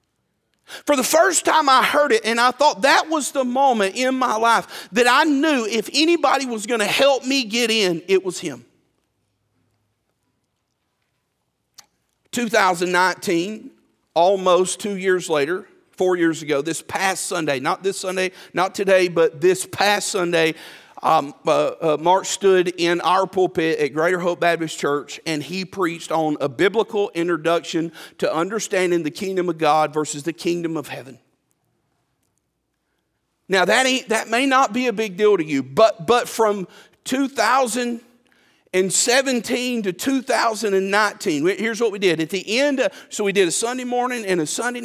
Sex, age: male, 40-59